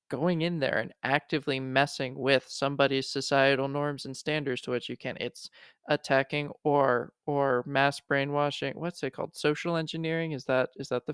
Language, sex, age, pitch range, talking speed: English, male, 20-39, 130-150 Hz, 170 wpm